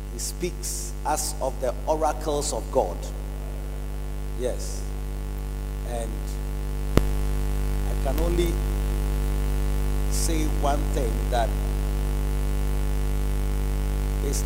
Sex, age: male, 50-69